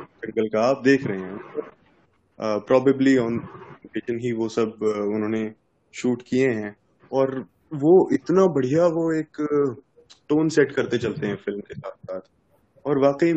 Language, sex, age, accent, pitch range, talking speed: Hindi, male, 20-39, native, 110-145 Hz, 140 wpm